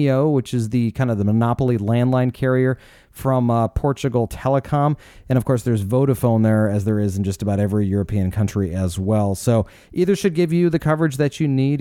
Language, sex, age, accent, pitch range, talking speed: English, male, 30-49, American, 110-130 Hz, 205 wpm